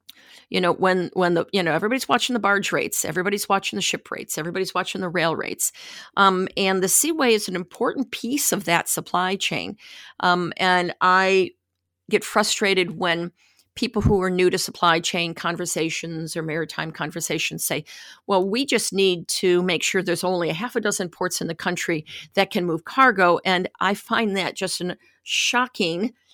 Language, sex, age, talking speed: English, female, 50-69, 180 wpm